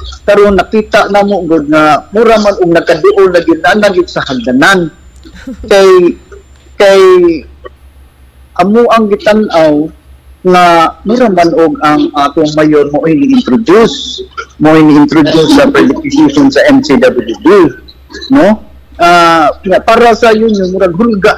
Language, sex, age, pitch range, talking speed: English, male, 50-69, 155-235 Hz, 120 wpm